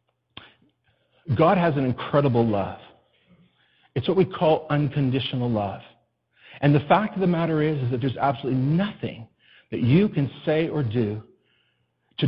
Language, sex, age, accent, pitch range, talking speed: English, male, 50-69, American, 140-210 Hz, 145 wpm